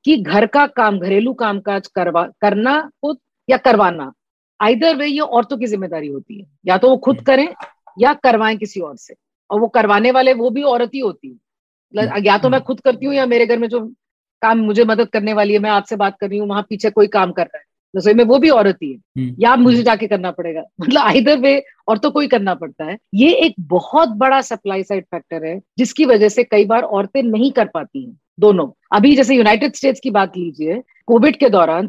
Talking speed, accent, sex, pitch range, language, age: 220 wpm, native, female, 205-265 Hz, Hindi, 40-59